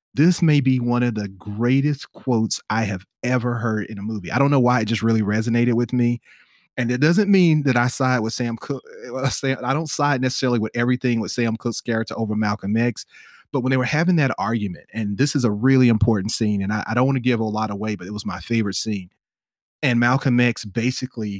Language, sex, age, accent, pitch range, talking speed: English, male, 30-49, American, 110-135 Hz, 230 wpm